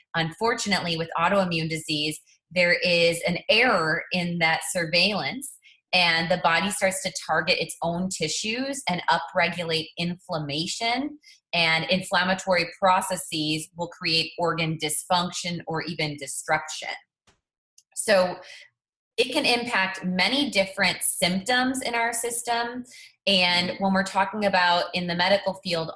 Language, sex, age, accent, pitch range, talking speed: English, female, 20-39, American, 160-195 Hz, 120 wpm